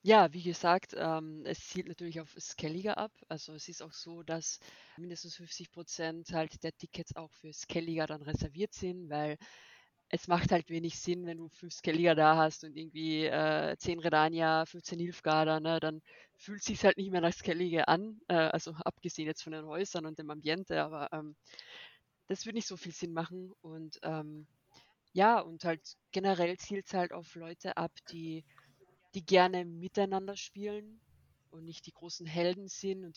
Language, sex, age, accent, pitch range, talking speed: German, female, 20-39, German, 160-185 Hz, 180 wpm